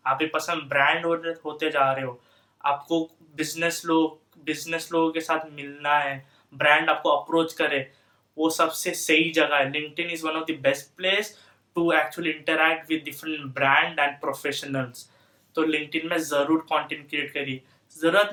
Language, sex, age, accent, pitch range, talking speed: Hindi, male, 20-39, native, 145-180 Hz, 165 wpm